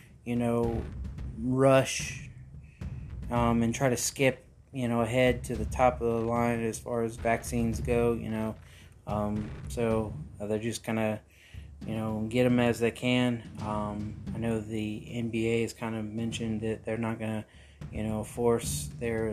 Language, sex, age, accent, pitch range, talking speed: English, male, 20-39, American, 105-125 Hz, 170 wpm